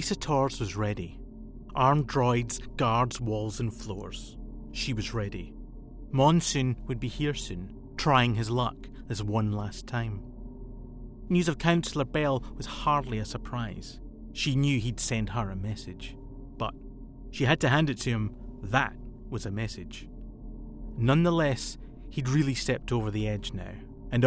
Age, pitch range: 30-49, 110-135 Hz